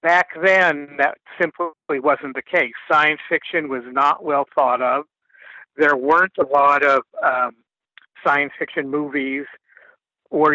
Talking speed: 135 wpm